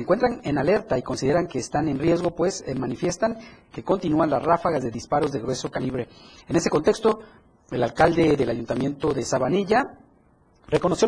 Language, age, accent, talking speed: Spanish, 40-59, Mexican, 170 wpm